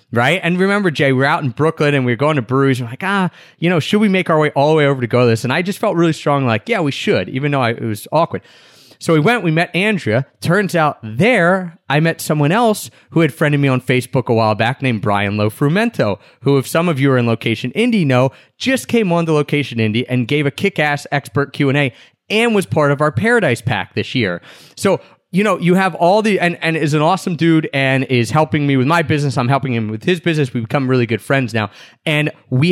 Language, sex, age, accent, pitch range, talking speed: English, male, 30-49, American, 130-170 Hz, 250 wpm